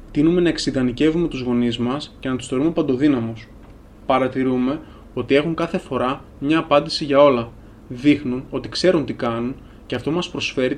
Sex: male